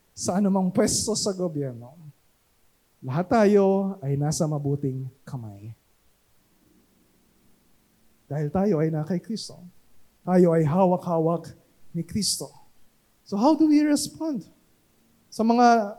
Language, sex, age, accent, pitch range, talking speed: Filipino, male, 20-39, native, 170-255 Hz, 105 wpm